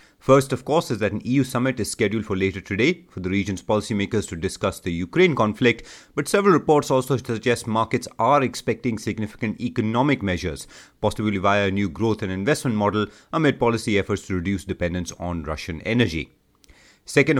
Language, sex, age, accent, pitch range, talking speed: English, male, 30-49, Indian, 95-120 Hz, 175 wpm